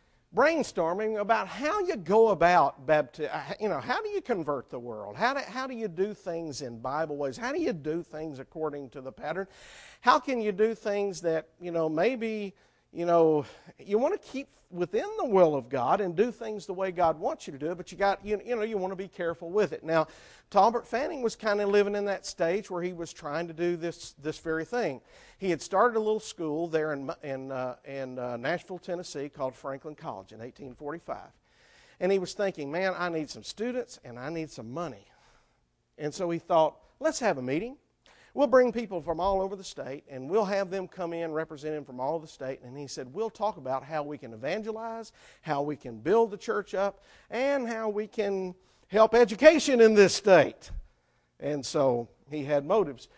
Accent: American